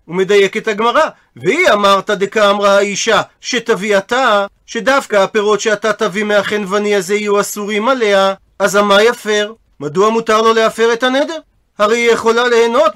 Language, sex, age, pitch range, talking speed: Hebrew, male, 40-59, 200-240 Hz, 145 wpm